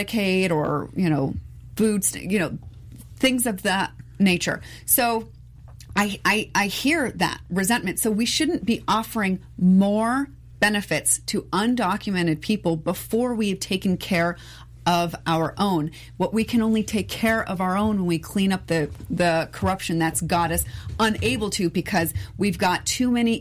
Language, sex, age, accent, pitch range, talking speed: English, female, 30-49, American, 165-220 Hz, 160 wpm